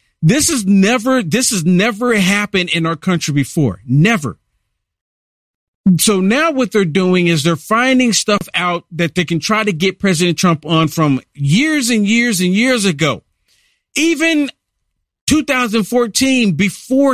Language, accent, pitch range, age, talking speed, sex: English, American, 165-230 Hz, 50-69, 145 wpm, male